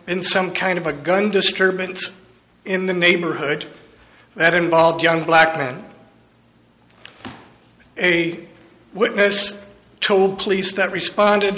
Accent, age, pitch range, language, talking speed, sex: American, 50-69, 160-190 Hz, English, 110 wpm, male